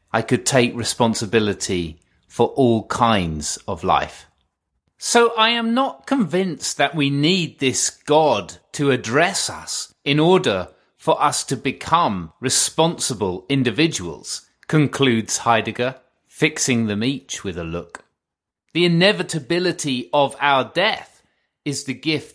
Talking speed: 125 wpm